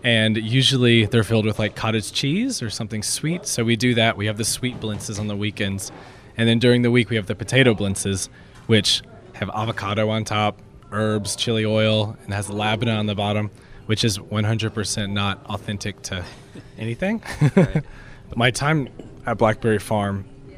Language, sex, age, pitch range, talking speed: English, male, 20-39, 105-120 Hz, 170 wpm